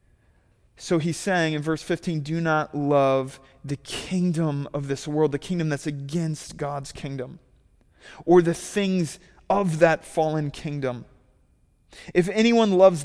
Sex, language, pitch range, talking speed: male, English, 135-170 Hz, 140 wpm